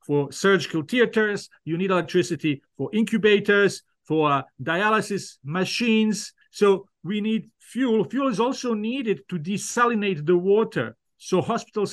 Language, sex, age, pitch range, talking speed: English, male, 50-69, 170-205 Hz, 130 wpm